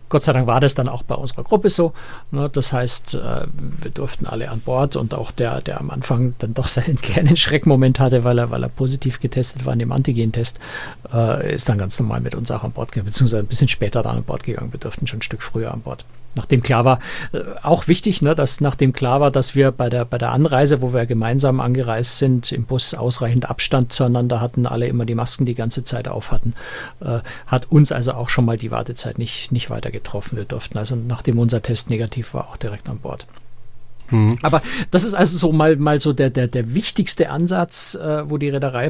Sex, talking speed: male, 220 wpm